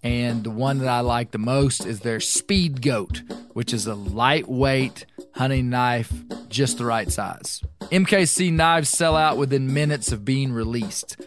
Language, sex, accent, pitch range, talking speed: English, male, American, 120-150 Hz, 165 wpm